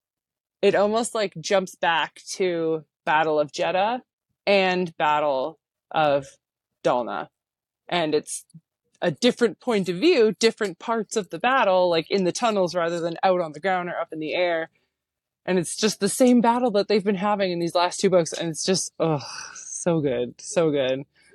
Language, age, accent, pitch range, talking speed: English, 20-39, American, 160-200 Hz, 175 wpm